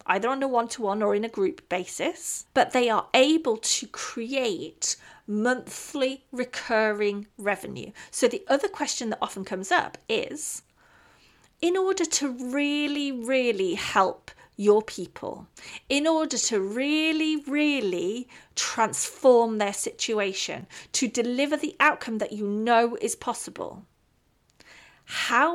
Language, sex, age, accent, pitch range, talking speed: English, female, 40-59, British, 215-300 Hz, 125 wpm